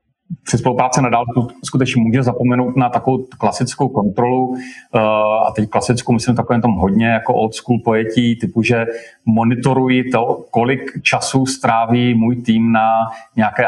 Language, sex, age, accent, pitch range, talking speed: Czech, male, 40-59, native, 115-125 Hz, 135 wpm